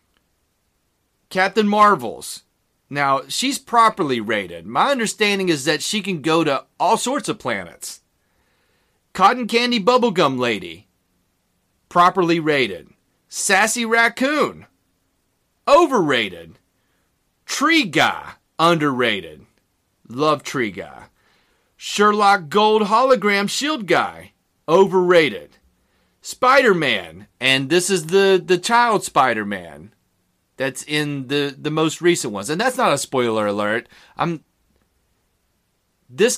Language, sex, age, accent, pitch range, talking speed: English, male, 30-49, American, 130-215 Hz, 100 wpm